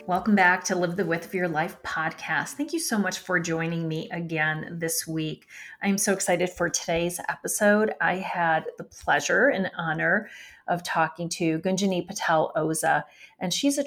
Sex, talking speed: female, 175 wpm